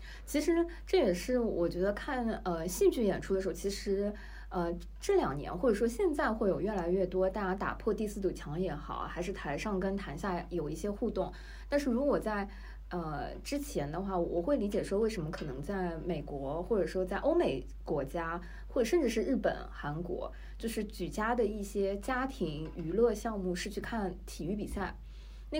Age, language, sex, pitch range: 20-39, Chinese, female, 180-225 Hz